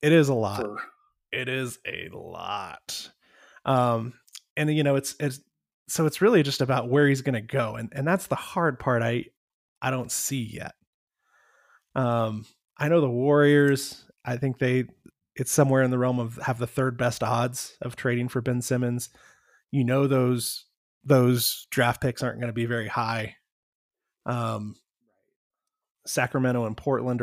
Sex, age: male, 20-39